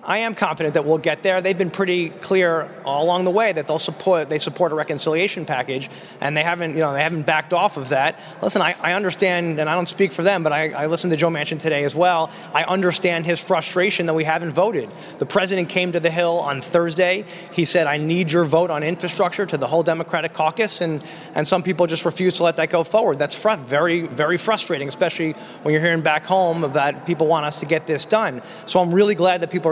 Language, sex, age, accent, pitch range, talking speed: English, male, 20-39, American, 155-180 Hz, 240 wpm